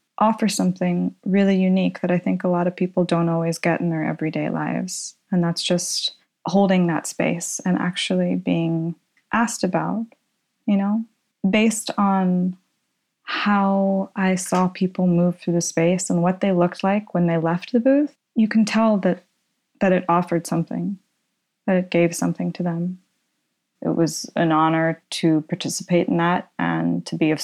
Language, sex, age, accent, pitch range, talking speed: English, female, 20-39, American, 170-200 Hz, 170 wpm